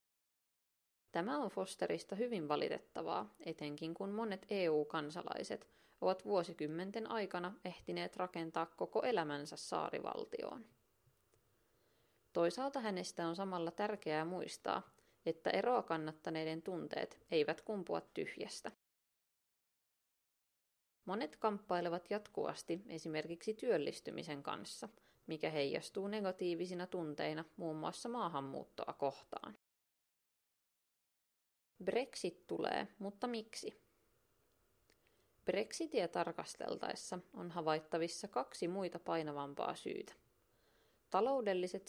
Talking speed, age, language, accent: 80 wpm, 30-49, Finnish, native